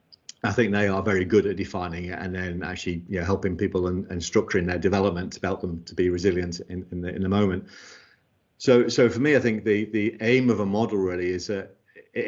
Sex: male